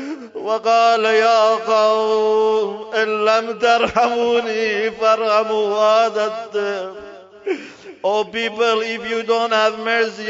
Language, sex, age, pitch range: English, male, 50-69, 210-230 Hz